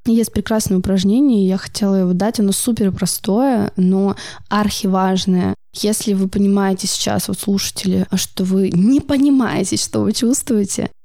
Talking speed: 140 wpm